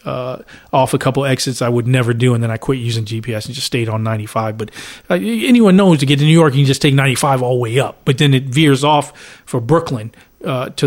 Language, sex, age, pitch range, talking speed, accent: English, male, 40-59, 125-150 Hz, 265 wpm, American